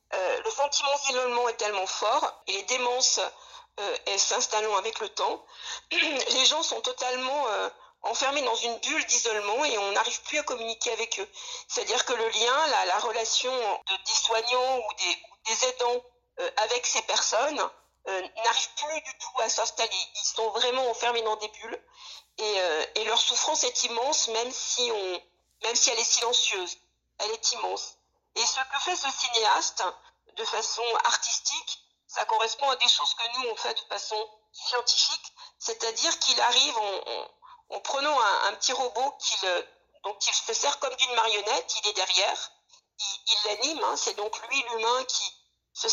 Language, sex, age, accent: English, female, 50-69, French